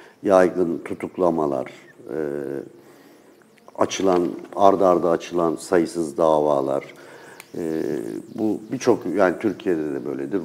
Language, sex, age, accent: Turkish, male, 60-79, native